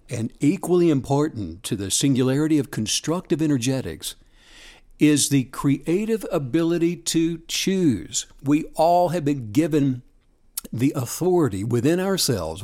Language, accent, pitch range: English, American, 130-170 Hz